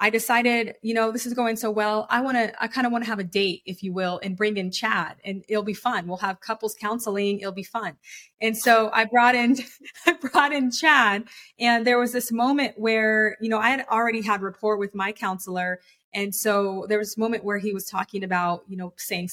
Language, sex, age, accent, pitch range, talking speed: English, female, 20-39, American, 210-280 Hz, 240 wpm